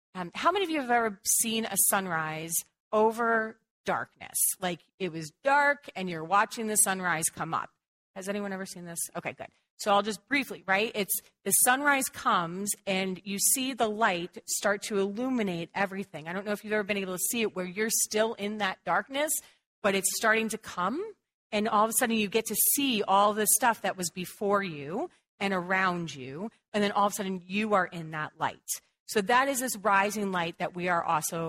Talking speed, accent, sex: 210 wpm, American, female